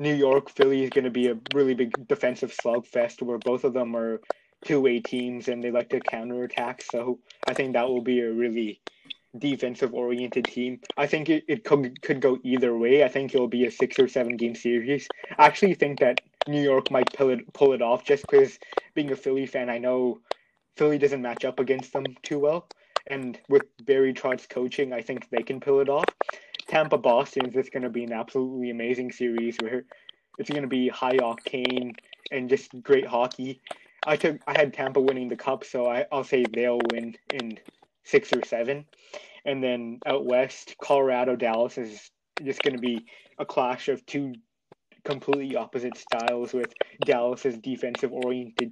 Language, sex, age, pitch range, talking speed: English, male, 20-39, 120-140 Hz, 185 wpm